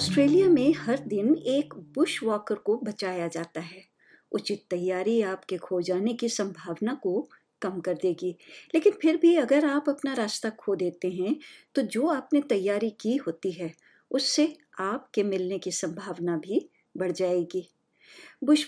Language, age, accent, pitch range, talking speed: Hindi, 50-69, native, 190-275 Hz, 150 wpm